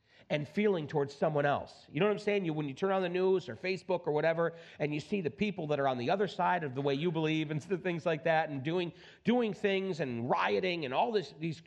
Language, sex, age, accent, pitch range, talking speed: English, male, 40-59, American, 130-190 Hz, 260 wpm